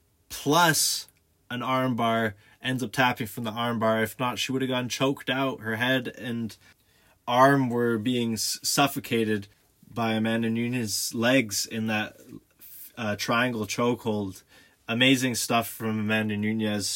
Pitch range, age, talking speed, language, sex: 110-135 Hz, 20-39, 140 wpm, English, male